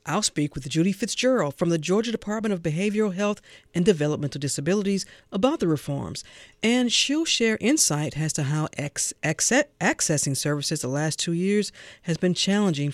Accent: American